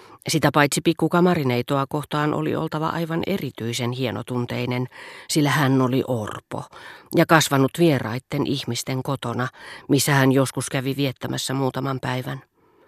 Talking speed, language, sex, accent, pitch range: 115 wpm, Finnish, female, native, 125-165 Hz